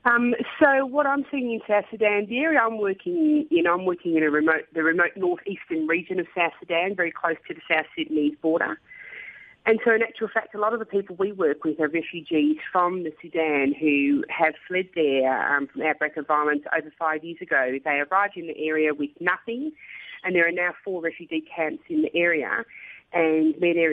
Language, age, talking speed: English, 30-49, 215 wpm